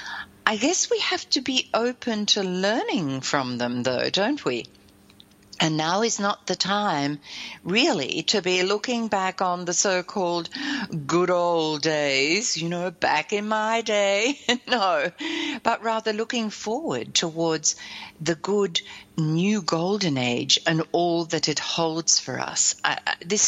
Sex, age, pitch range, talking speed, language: female, 60-79, 155-220 Hz, 145 wpm, English